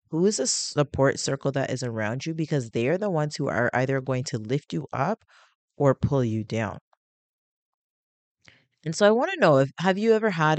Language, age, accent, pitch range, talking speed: English, 30-49, American, 130-170 Hz, 210 wpm